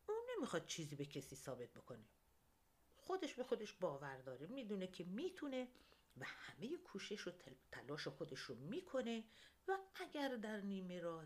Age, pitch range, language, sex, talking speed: 50-69, 155-255 Hz, Persian, female, 150 wpm